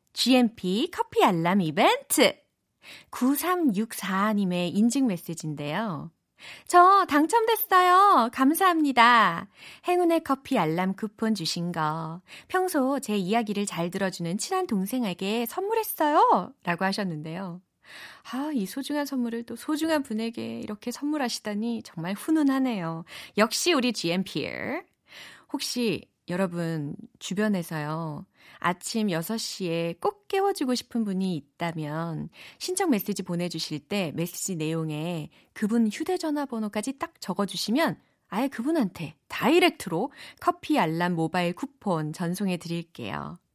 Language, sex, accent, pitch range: Korean, female, native, 175-280 Hz